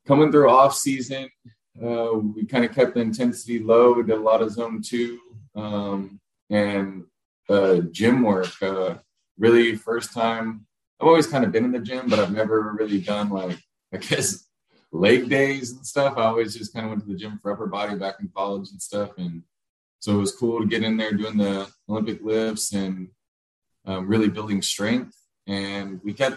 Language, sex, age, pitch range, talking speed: English, male, 20-39, 100-120 Hz, 195 wpm